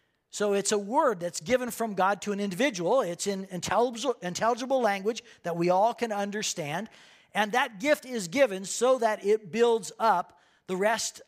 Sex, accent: male, American